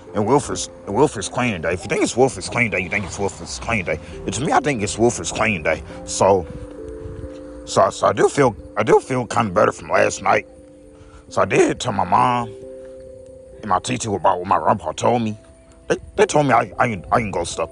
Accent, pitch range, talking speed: American, 85-120 Hz, 225 wpm